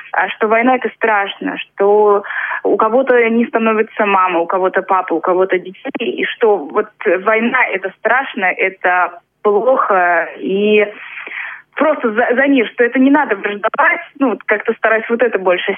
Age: 20-39